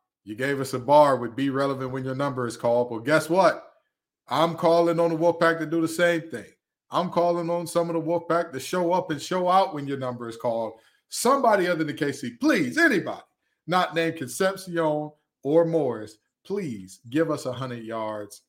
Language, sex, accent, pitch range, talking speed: English, male, American, 125-190 Hz, 200 wpm